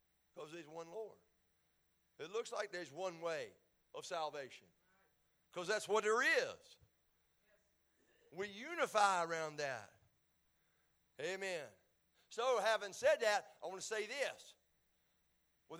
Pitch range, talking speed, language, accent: 205-265 Hz, 120 wpm, English, American